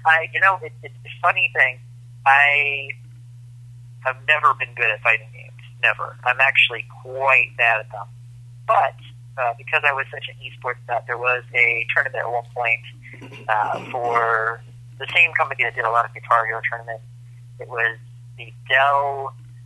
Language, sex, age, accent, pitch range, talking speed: English, male, 40-59, American, 120-135 Hz, 175 wpm